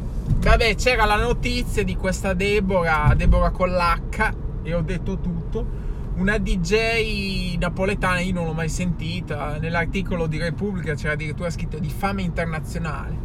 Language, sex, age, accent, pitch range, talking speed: Italian, male, 20-39, native, 165-200 Hz, 135 wpm